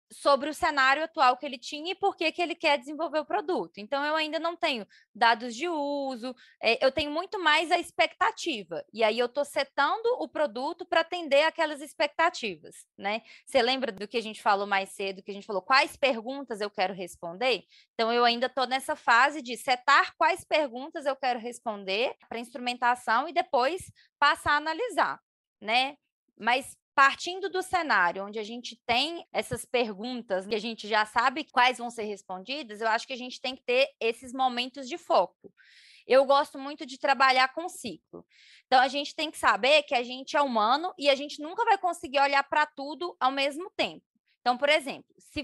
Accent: Brazilian